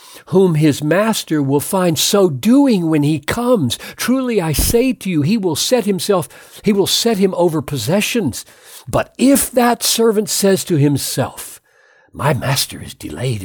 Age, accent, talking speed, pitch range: 60-79, American, 160 wpm, 130-210 Hz